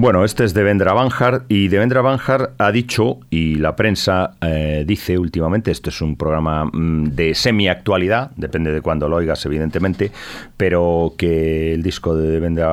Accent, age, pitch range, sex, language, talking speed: Spanish, 40-59, 80-105 Hz, male, Spanish, 175 wpm